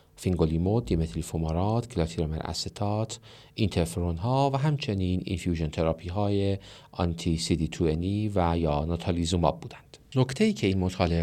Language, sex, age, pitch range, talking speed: Persian, male, 40-59, 85-115 Hz, 120 wpm